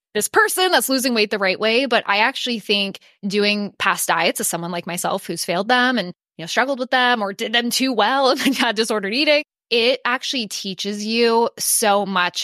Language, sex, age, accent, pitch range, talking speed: English, female, 20-39, American, 185-235 Hz, 205 wpm